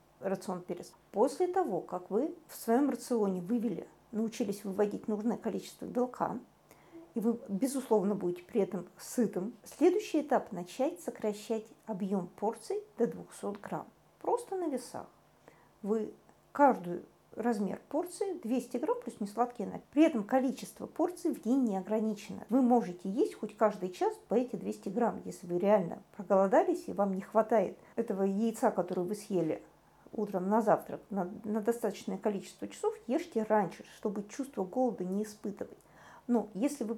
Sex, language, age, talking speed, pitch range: female, Russian, 50-69, 150 wpm, 205-265 Hz